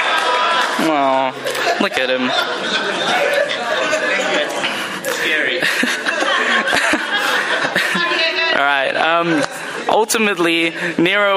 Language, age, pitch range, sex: English, 10-29, 140-185 Hz, male